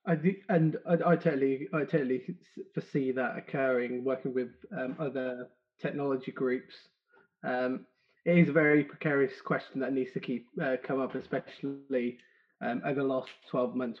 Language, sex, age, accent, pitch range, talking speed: English, male, 20-39, British, 125-160 Hz, 165 wpm